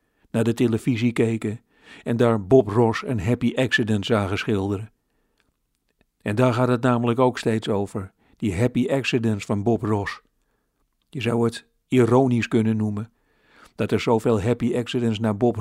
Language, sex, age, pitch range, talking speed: Dutch, male, 50-69, 115-125 Hz, 155 wpm